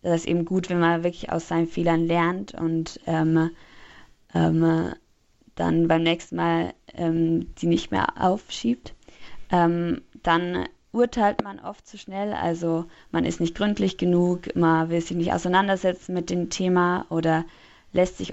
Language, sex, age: German, female, 20-39